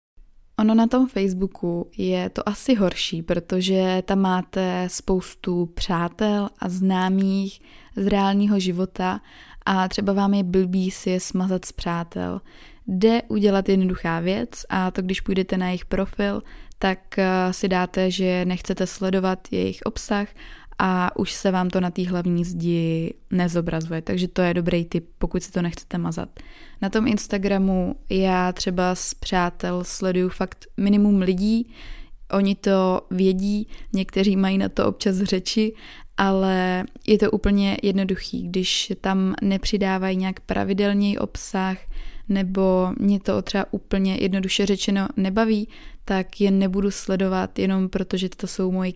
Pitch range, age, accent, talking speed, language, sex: 185-205 Hz, 20-39, native, 140 wpm, Czech, female